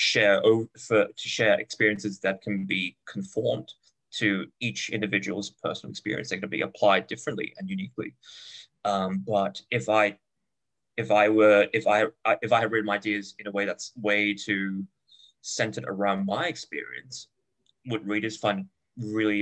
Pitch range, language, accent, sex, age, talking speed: 100-125 Hz, English, British, male, 20-39, 165 wpm